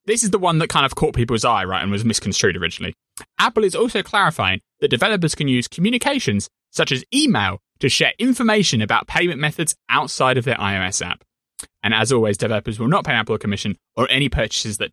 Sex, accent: male, British